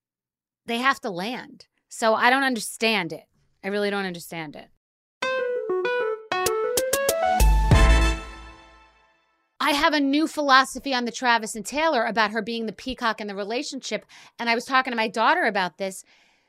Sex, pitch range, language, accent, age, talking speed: female, 225-315 Hz, English, American, 30-49, 150 wpm